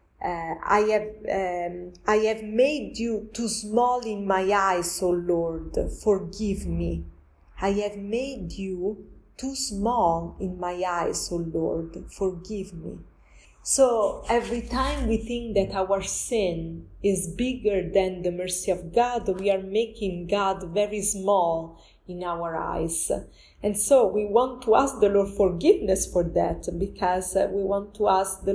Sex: female